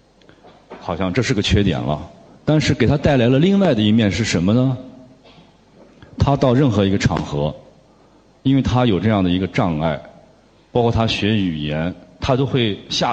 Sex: male